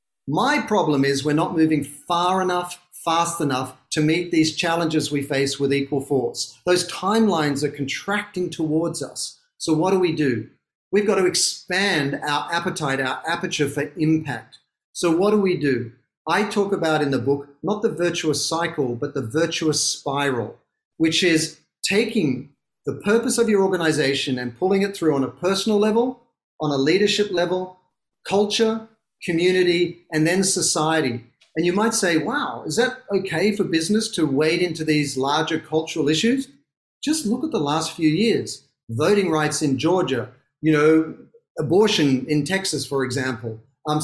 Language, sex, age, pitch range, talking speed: English, male, 40-59, 145-200 Hz, 165 wpm